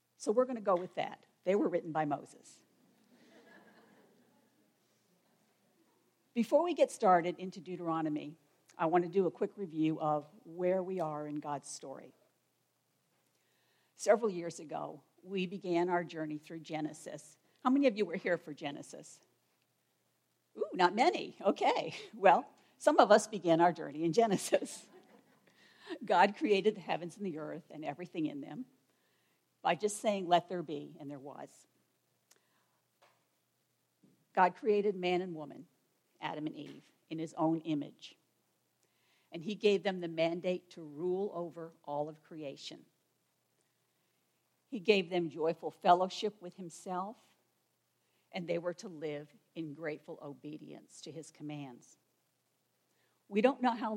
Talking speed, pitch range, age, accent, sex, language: 140 wpm, 155-200 Hz, 50-69, American, female, English